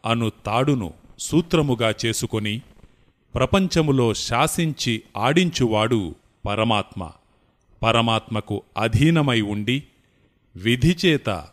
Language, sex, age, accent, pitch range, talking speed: Telugu, male, 30-49, native, 105-135 Hz, 60 wpm